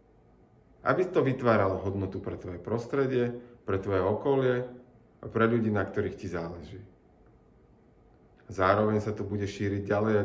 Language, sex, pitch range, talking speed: Slovak, male, 105-130 Hz, 140 wpm